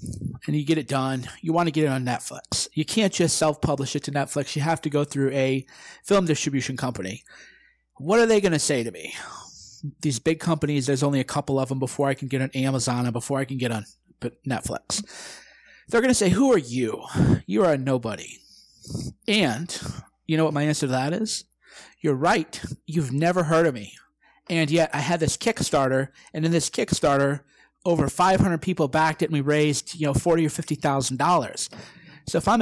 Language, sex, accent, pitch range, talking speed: English, male, American, 135-170 Hz, 205 wpm